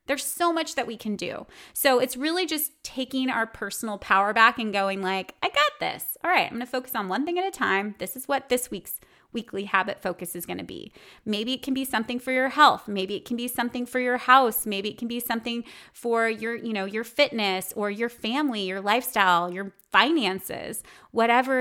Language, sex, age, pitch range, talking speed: English, female, 20-39, 195-250 Hz, 225 wpm